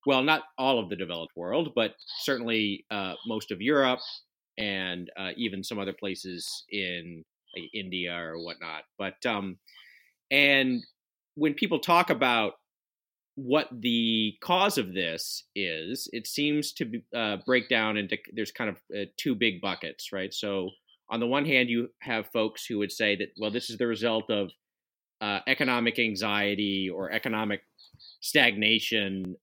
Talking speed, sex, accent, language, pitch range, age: 155 wpm, male, American, English, 95-125 Hz, 30-49